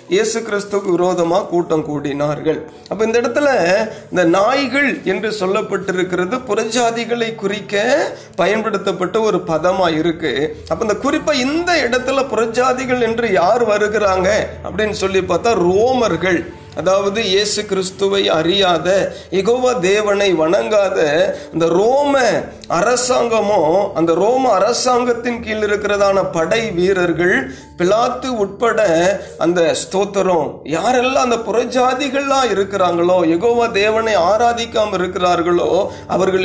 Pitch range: 185-250 Hz